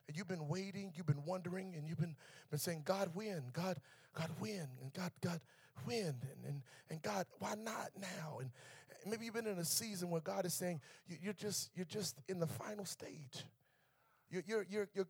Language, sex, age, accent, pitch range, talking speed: English, male, 40-59, American, 140-180 Hz, 205 wpm